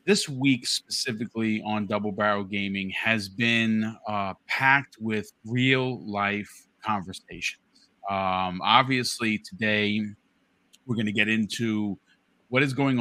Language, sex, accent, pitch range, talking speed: English, male, American, 100-120 Hz, 120 wpm